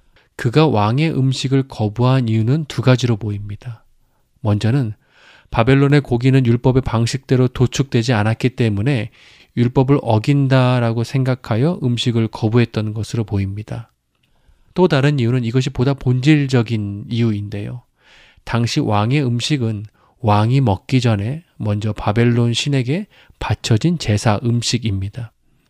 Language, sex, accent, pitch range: Korean, male, native, 110-140 Hz